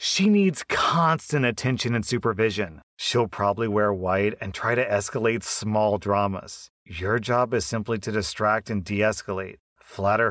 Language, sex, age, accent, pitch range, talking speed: English, male, 30-49, American, 105-120 Hz, 150 wpm